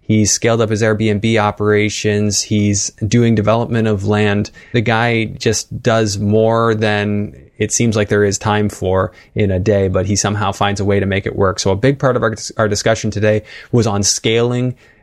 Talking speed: 195 wpm